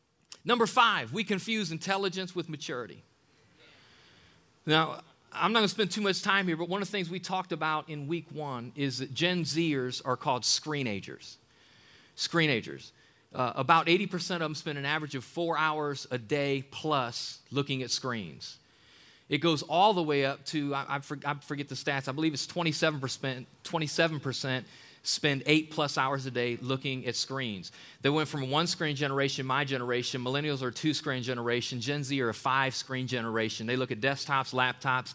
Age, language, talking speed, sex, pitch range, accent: 40-59, English, 175 wpm, male, 130-175 Hz, American